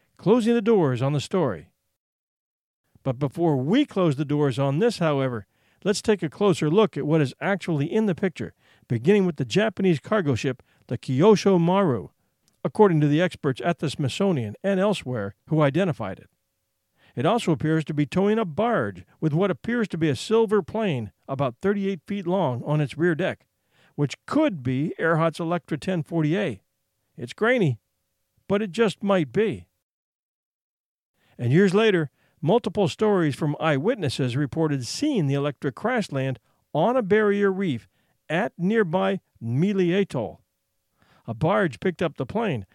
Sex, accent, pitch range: male, American, 135-195 Hz